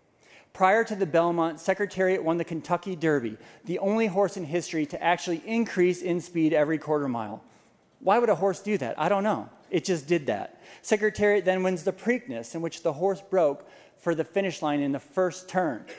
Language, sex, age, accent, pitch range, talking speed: English, male, 40-59, American, 155-195 Hz, 200 wpm